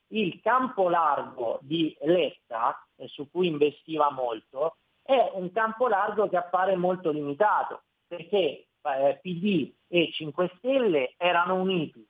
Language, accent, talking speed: Italian, native, 130 wpm